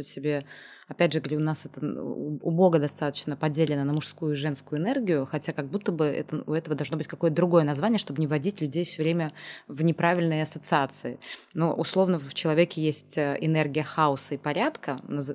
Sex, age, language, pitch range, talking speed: female, 20-39, Russian, 145-170 Hz, 180 wpm